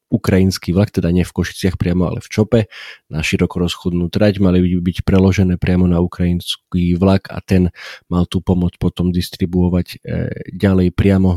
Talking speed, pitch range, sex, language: 155 wpm, 85-100 Hz, male, Slovak